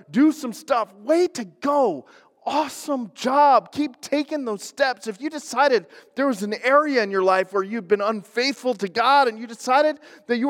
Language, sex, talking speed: English, male, 190 wpm